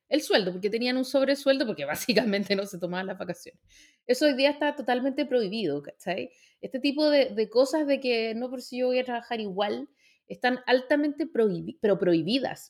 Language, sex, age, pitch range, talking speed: Spanish, female, 30-49, 210-290 Hz, 190 wpm